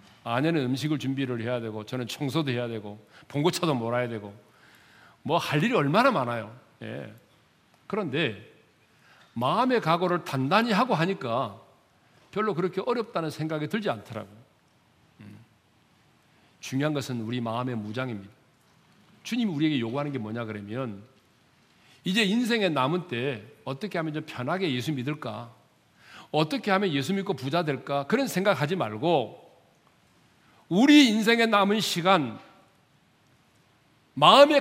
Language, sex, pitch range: Korean, male, 130-200 Hz